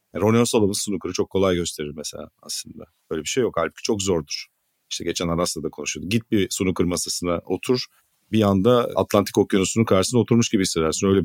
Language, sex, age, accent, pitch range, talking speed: Turkish, male, 50-69, native, 90-120 Hz, 185 wpm